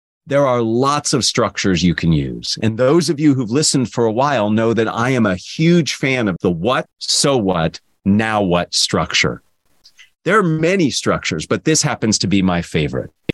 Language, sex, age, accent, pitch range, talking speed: English, male, 40-59, American, 105-160 Hz, 195 wpm